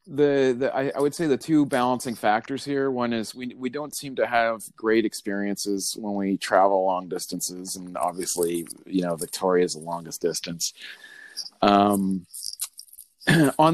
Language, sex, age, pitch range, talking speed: English, male, 30-49, 95-130 Hz, 160 wpm